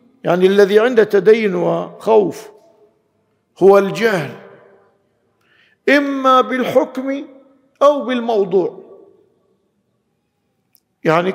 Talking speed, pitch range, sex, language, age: 65 wpm, 205-270 Hz, male, Arabic, 50-69